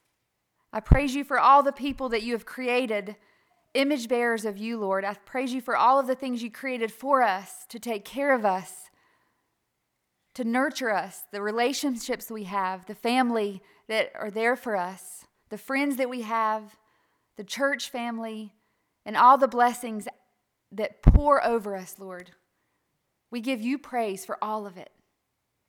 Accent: American